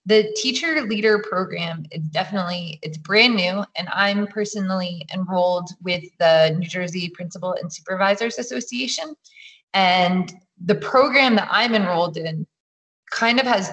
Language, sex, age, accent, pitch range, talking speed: English, female, 20-39, American, 175-220 Hz, 135 wpm